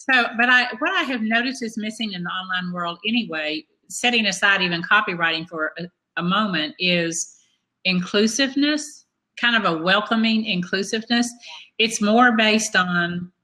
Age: 50-69